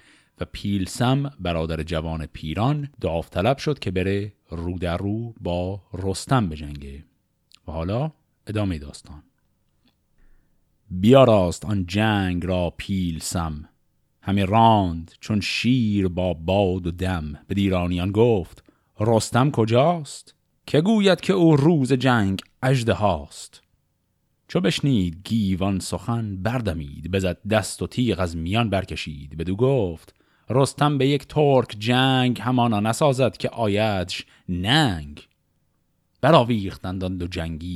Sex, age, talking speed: male, 30-49, 120 wpm